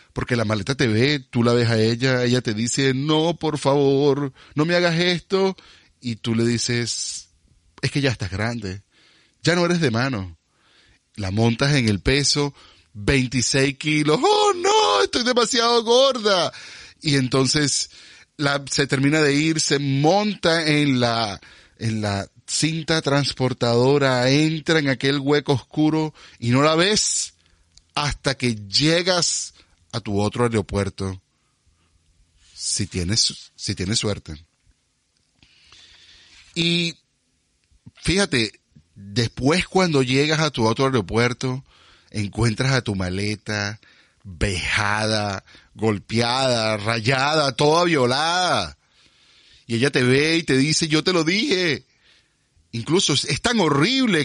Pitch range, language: 110-155 Hz, Spanish